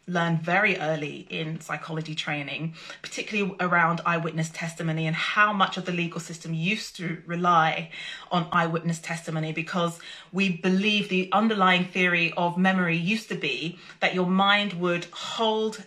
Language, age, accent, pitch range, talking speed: English, 30-49, British, 165-200 Hz, 150 wpm